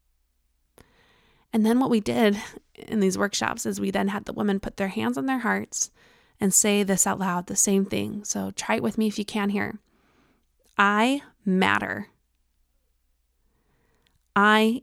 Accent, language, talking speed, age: American, English, 160 wpm, 20-39